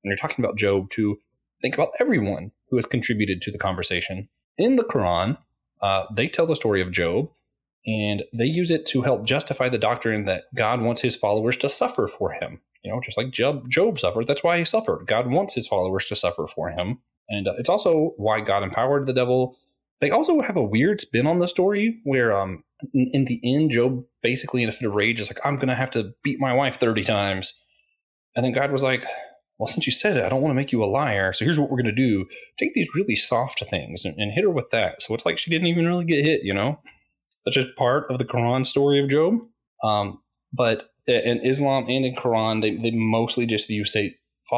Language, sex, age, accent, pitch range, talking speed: English, male, 20-39, American, 105-135 Hz, 235 wpm